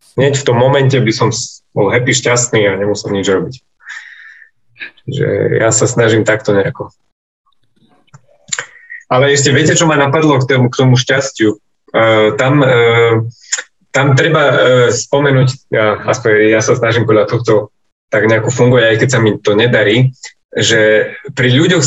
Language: Slovak